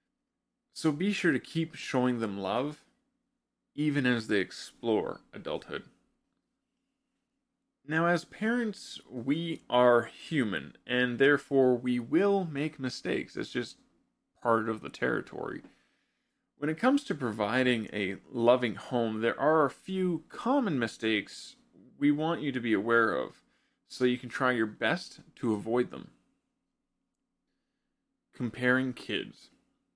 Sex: male